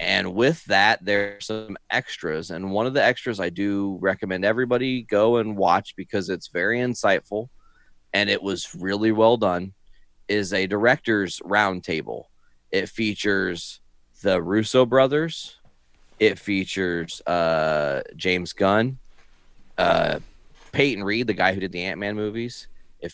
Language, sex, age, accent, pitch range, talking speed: English, male, 30-49, American, 90-110 Hz, 140 wpm